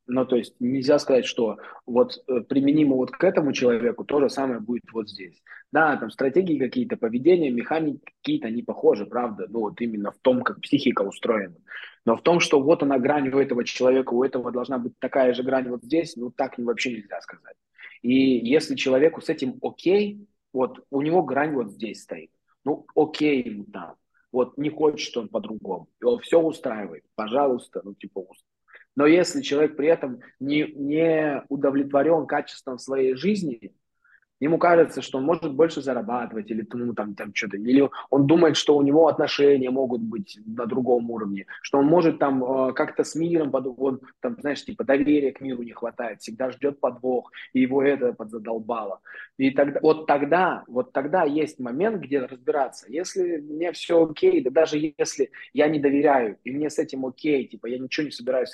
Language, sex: Russian, male